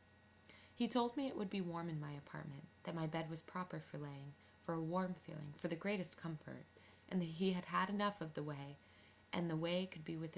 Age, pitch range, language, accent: 20-39, 145-185 Hz, English, American